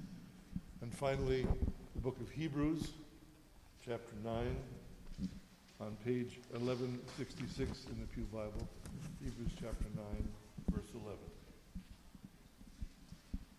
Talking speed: 85 wpm